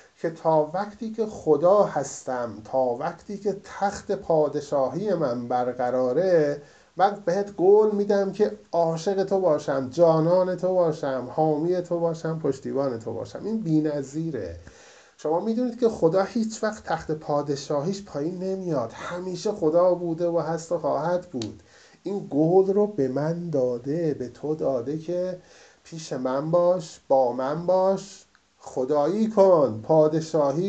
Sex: male